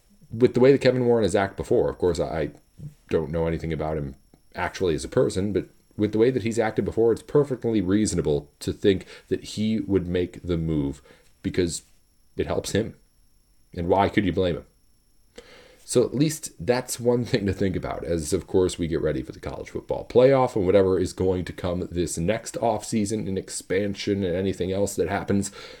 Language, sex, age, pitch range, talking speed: English, male, 40-59, 85-110 Hz, 200 wpm